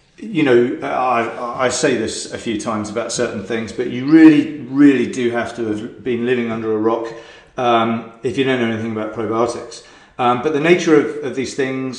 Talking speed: 205 wpm